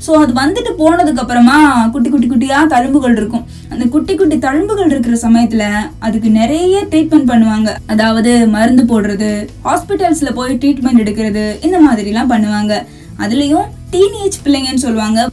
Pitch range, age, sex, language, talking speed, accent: 230-295 Hz, 20-39, female, Tamil, 100 wpm, native